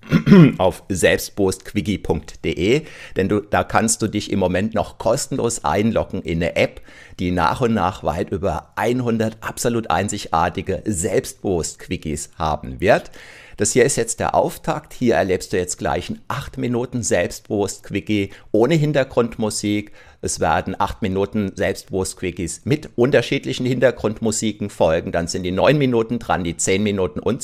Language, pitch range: German, 90-115 Hz